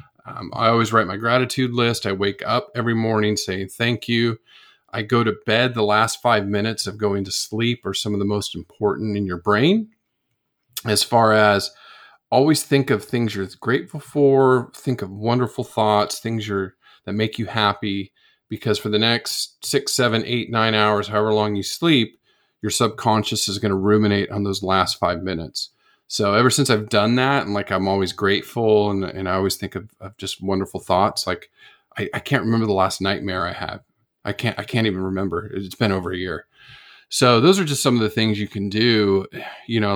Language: English